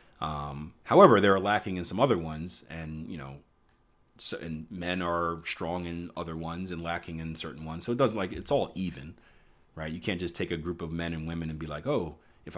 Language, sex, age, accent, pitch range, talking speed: English, male, 30-49, American, 80-95 Hz, 225 wpm